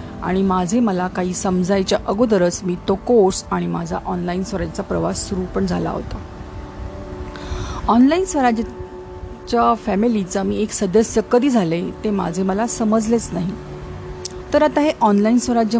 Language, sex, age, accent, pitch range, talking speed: Marathi, female, 40-59, native, 180-240 Hz, 105 wpm